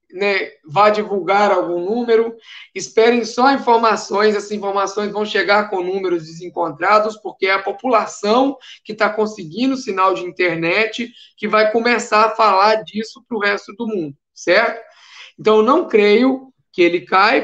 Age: 20-39